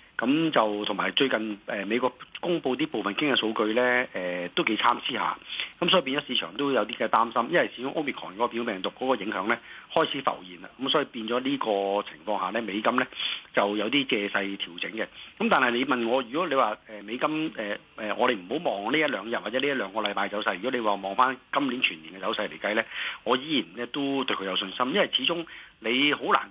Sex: male